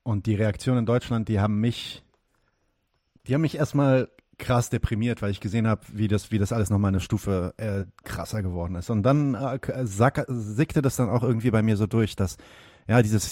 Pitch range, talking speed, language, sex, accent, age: 95-120 Hz, 210 wpm, German, male, German, 40-59